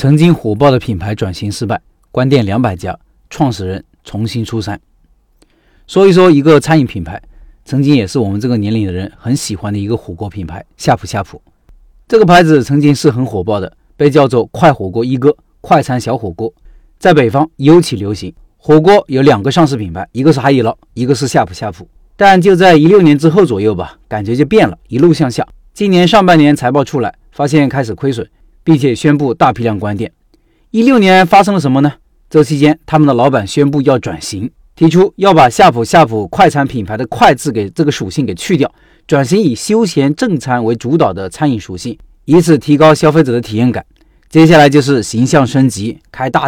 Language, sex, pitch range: Chinese, male, 110-155 Hz